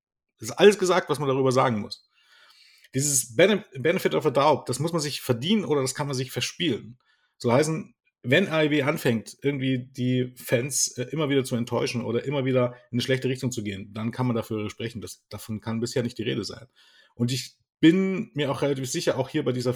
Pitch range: 120-150 Hz